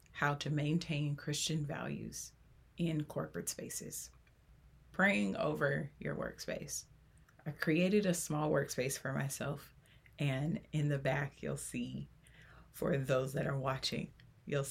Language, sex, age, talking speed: English, female, 30-49, 125 wpm